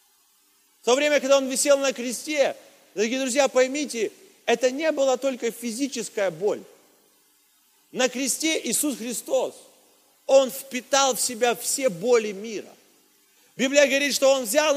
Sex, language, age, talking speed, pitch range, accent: male, Russian, 40-59, 135 wpm, 245-310 Hz, native